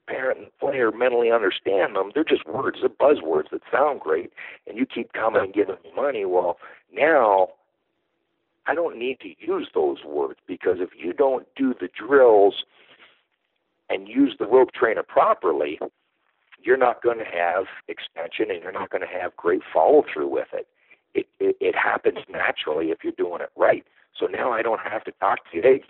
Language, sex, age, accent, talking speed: English, male, 60-79, American, 185 wpm